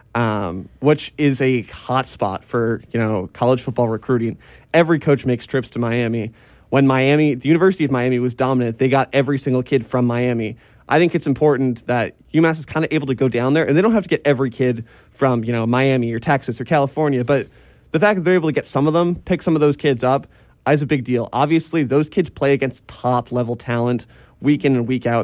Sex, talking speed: male, 230 wpm